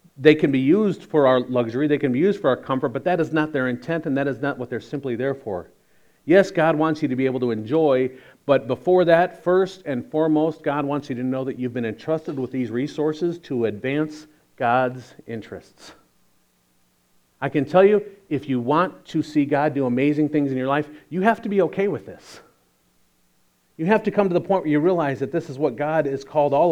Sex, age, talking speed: male, 40-59, 225 wpm